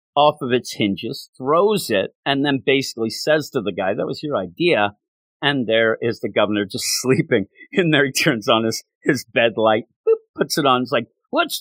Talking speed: 205 wpm